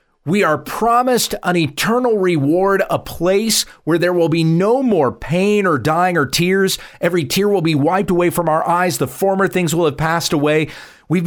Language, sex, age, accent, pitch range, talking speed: English, male, 40-59, American, 130-200 Hz, 190 wpm